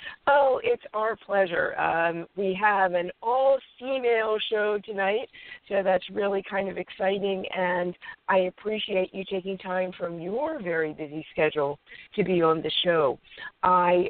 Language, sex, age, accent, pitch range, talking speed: English, female, 50-69, American, 160-220 Hz, 150 wpm